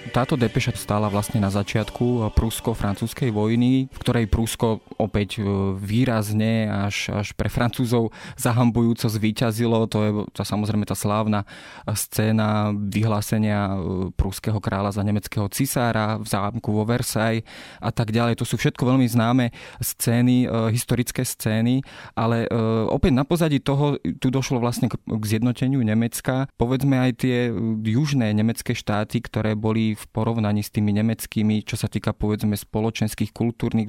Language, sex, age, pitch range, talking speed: Slovak, male, 20-39, 110-120 Hz, 135 wpm